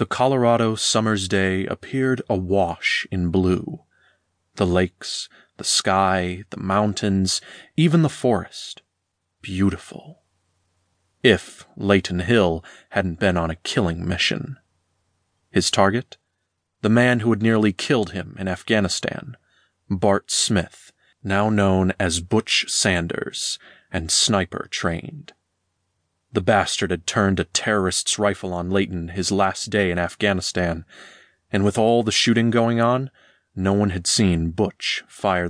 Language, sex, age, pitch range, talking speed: English, male, 30-49, 90-110 Hz, 125 wpm